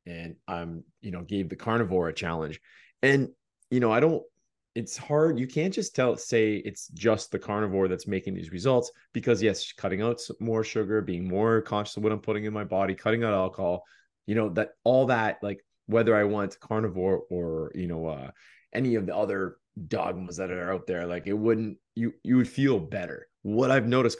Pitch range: 95-120 Hz